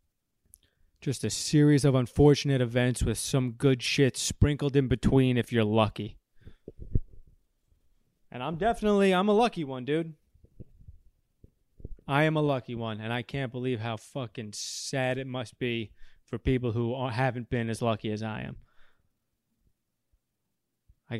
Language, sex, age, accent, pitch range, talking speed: English, male, 20-39, American, 115-150 Hz, 140 wpm